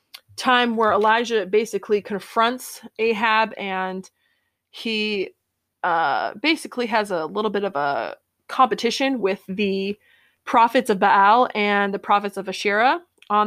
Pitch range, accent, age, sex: 200-240 Hz, American, 20-39, female